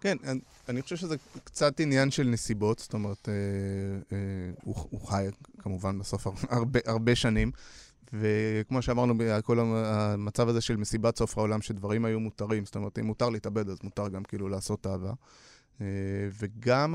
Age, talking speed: 20-39, 155 wpm